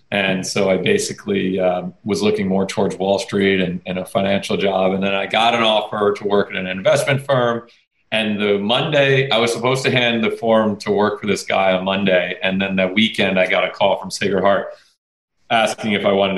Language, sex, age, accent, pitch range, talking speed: English, male, 40-59, American, 95-115 Hz, 220 wpm